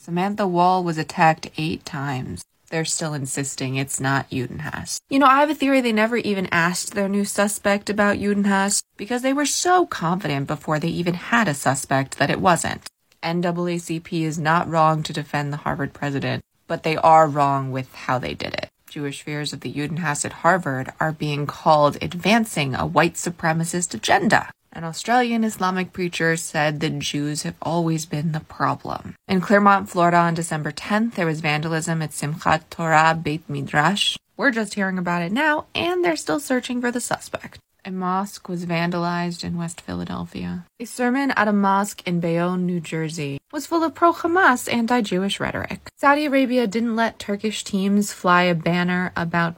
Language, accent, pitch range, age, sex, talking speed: English, American, 155-205 Hz, 20-39, female, 175 wpm